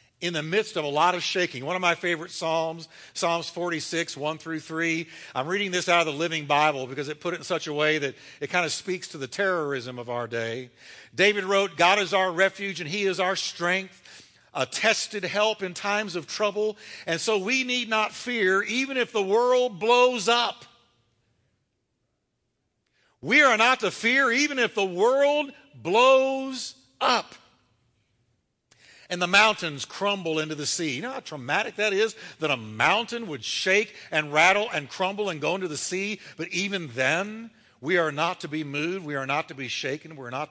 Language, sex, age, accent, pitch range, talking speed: English, male, 50-69, American, 145-200 Hz, 195 wpm